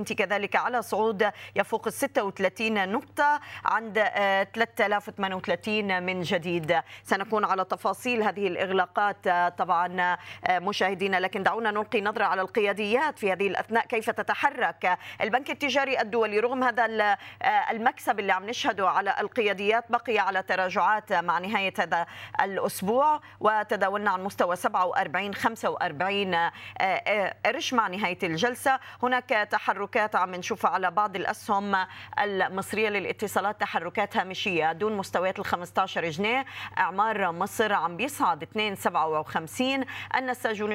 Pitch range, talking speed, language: 185-225 Hz, 115 wpm, Arabic